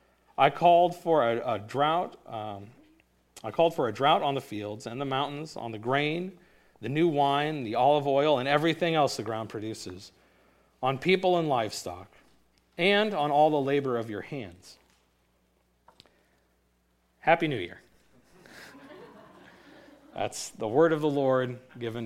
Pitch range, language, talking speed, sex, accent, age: 100-145 Hz, English, 135 wpm, male, American, 40-59